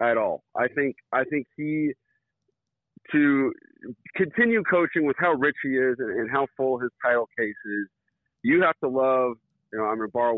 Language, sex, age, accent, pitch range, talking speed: English, male, 40-59, American, 115-165 Hz, 185 wpm